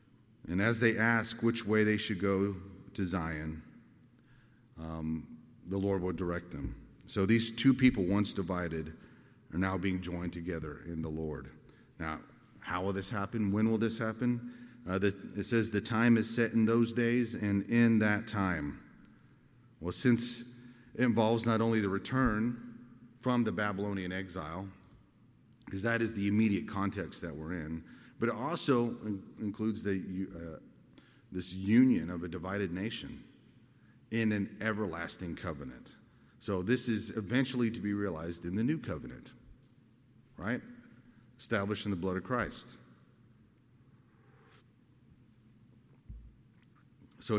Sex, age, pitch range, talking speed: male, 30-49, 95-120 Hz, 140 wpm